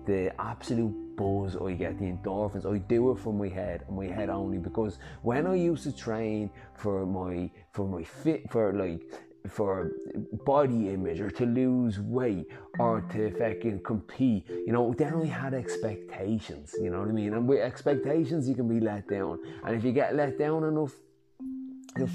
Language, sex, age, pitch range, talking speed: English, male, 20-39, 100-135 Hz, 180 wpm